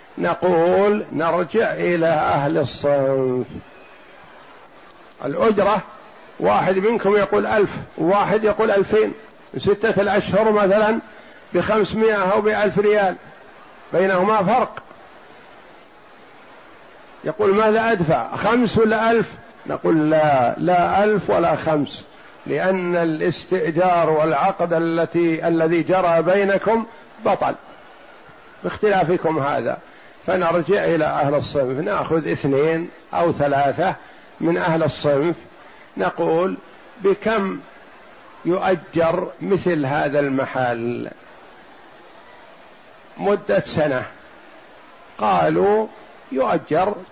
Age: 50-69